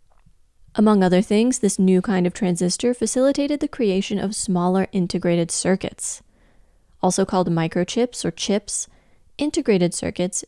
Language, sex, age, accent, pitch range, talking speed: English, female, 20-39, American, 175-215 Hz, 125 wpm